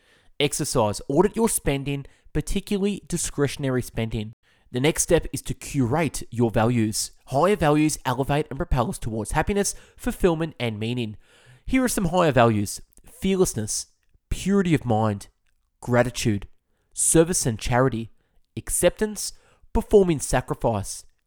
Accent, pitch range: Australian, 110-155 Hz